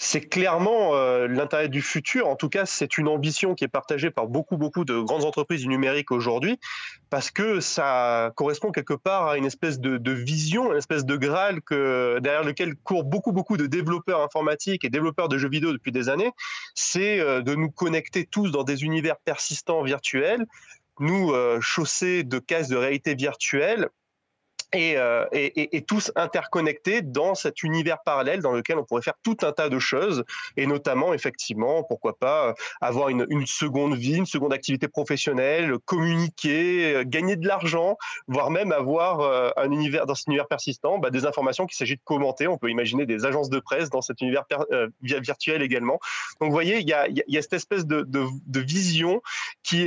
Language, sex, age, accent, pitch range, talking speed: French, male, 30-49, French, 140-175 Hz, 190 wpm